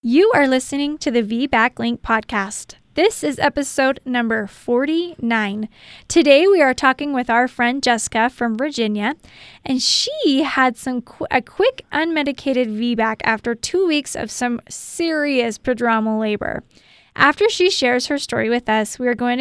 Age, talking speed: 10-29, 160 wpm